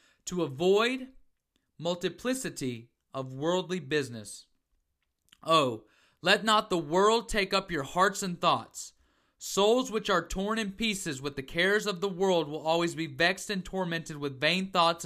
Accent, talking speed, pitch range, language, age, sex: American, 150 wpm, 145-195 Hz, English, 30-49, male